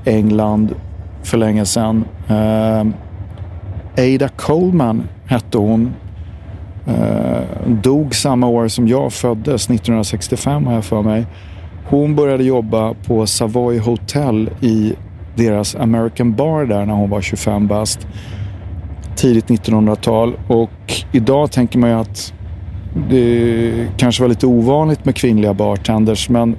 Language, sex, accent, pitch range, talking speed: Swedish, male, native, 100-120 Hz, 120 wpm